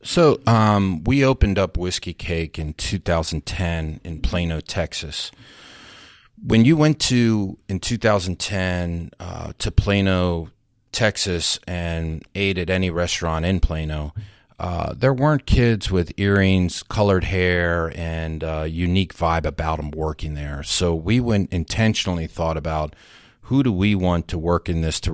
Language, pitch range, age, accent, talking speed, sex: English, 85-105 Hz, 40-59, American, 145 wpm, male